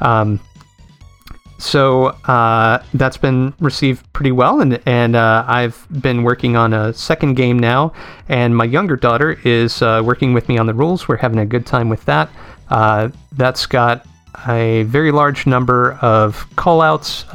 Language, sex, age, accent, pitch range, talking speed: English, male, 30-49, American, 110-130 Hz, 165 wpm